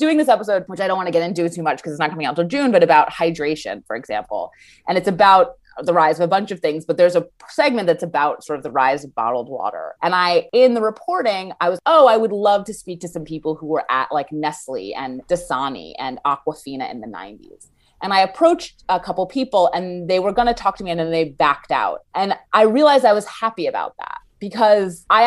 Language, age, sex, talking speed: English, 30-49, female, 245 wpm